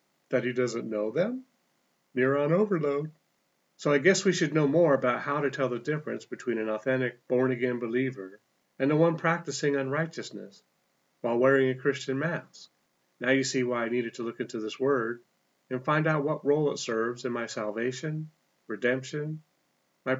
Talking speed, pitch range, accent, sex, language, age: 175 wpm, 120-150 Hz, American, male, English, 40-59